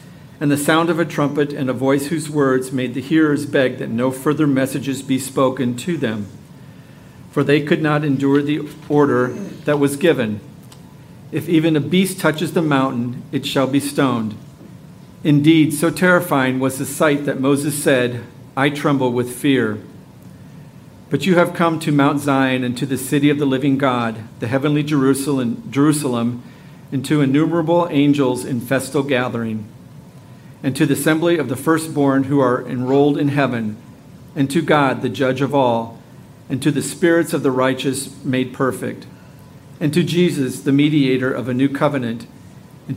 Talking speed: 170 wpm